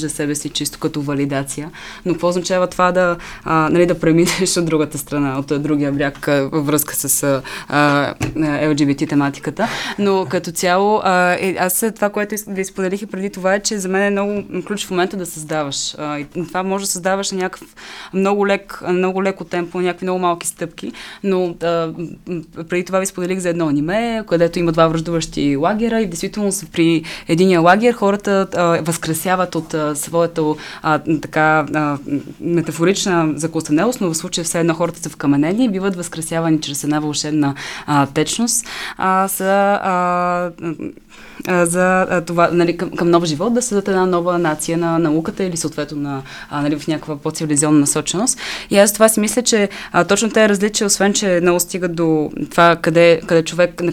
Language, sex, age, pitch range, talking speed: Bulgarian, female, 20-39, 155-190 Hz, 170 wpm